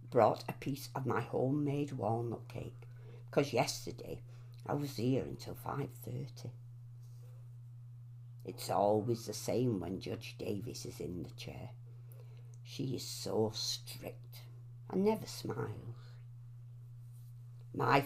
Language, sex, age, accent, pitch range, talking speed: English, female, 60-79, British, 120-125 Hz, 115 wpm